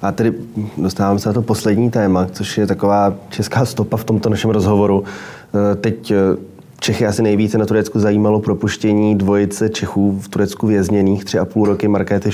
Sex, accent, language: male, native, Czech